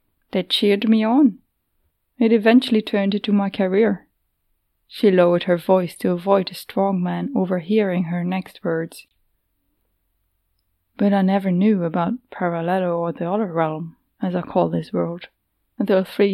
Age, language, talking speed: 20-39, English, 145 wpm